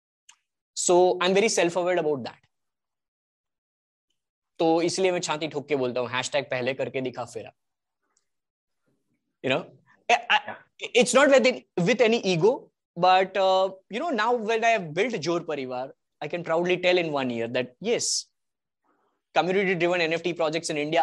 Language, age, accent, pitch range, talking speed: English, 20-39, Indian, 150-205 Hz, 110 wpm